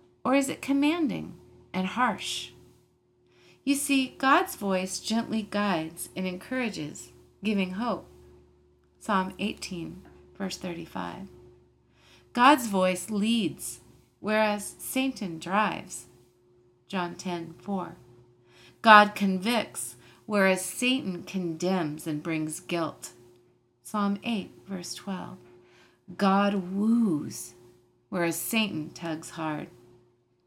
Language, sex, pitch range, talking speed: English, female, 155-225 Hz, 95 wpm